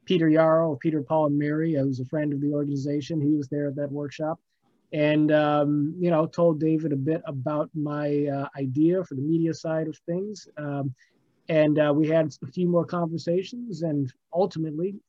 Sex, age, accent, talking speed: male, 30-49, American, 185 wpm